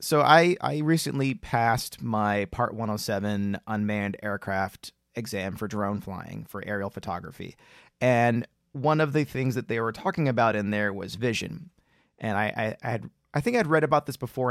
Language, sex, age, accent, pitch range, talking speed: English, male, 30-49, American, 105-130 Hz, 185 wpm